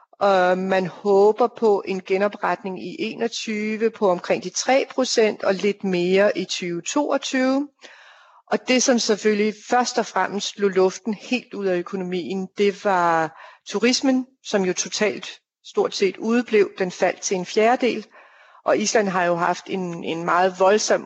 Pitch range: 180-215 Hz